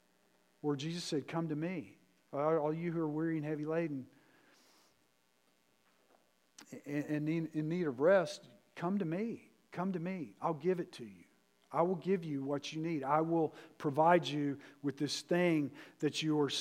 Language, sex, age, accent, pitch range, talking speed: English, male, 50-69, American, 145-175 Hz, 170 wpm